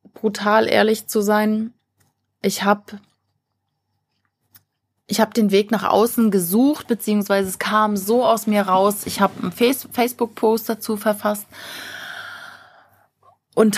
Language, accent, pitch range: German, German, 200-235 Hz